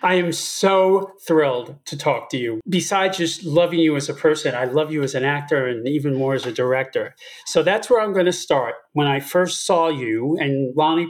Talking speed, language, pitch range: 220 wpm, English, 140-195 Hz